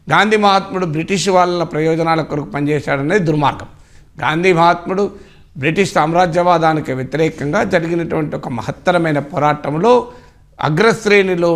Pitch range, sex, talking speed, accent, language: 145-190 Hz, male, 95 wpm, native, Telugu